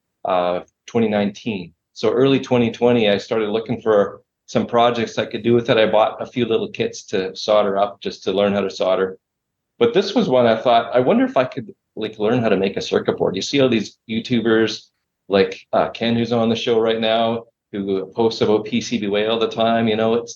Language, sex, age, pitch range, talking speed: English, male, 40-59, 105-120 Hz, 220 wpm